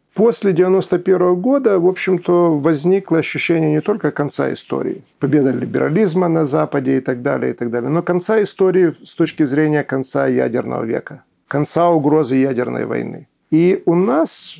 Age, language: 50-69, Russian